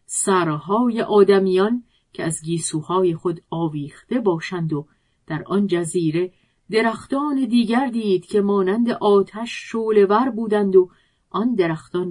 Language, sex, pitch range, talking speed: Persian, female, 160-215 Hz, 115 wpm